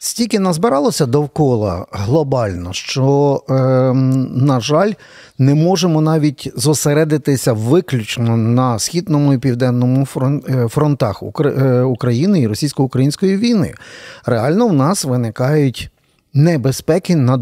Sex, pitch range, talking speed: male, 120-155 Hz, 105 wpm